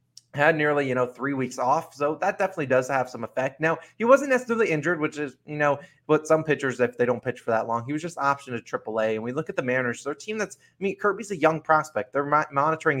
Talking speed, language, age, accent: 265 wpm, English, 20-39, American